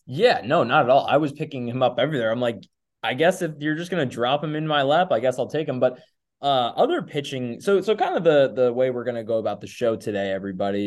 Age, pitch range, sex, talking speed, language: 20-39, 105-135 Hz, male, 265 wpm, English